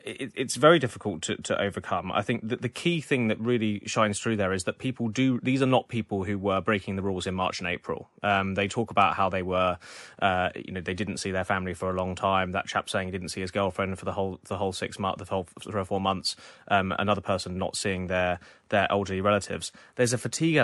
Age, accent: 20-39, British